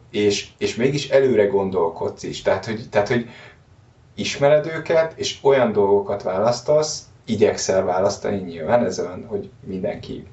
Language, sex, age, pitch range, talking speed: Hungarian, male, 20-39, 105-140 Hz, 130 wpm